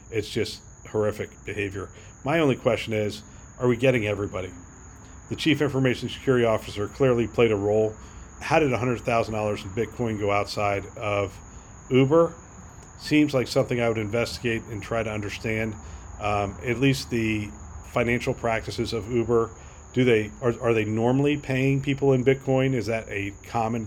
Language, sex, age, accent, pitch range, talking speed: English, male, 40-59, American, 100-125 Hz, 155 wpm